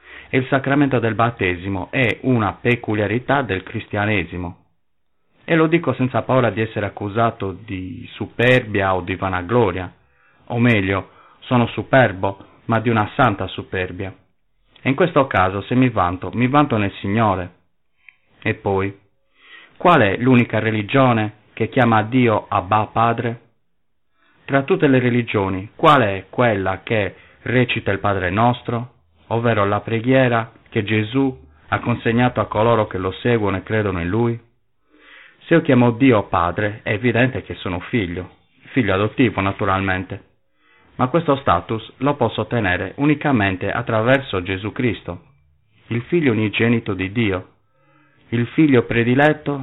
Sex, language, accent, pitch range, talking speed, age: male, Italian, native, 95-125 Hz, 135 wpm, 30-49